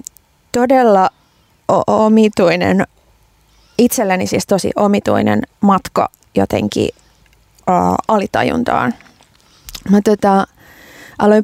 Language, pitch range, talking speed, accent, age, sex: Finnish, 190-245 Hz, 70 wpm, native, 20-39, female